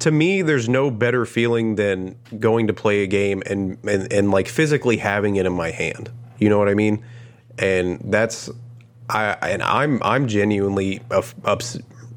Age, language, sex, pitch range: 30-49, English, male, 95-120 Hz